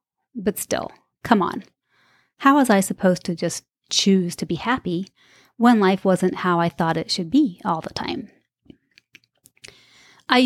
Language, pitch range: English, 180-215 Hz